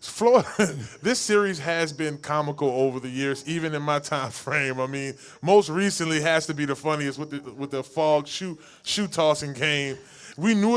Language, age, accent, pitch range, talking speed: English, 20-39, American, 135-165 Hz, 190 wpm